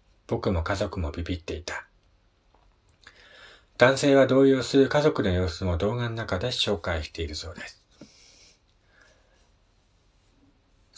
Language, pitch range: Japanese, 85-110 Hz